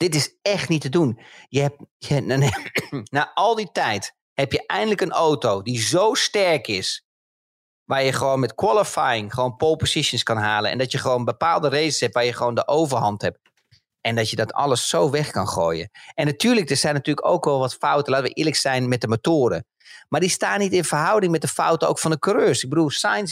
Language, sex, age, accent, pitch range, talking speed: Dutch, male, 40-59, Dutch, 135-185 Hz, 225 wpm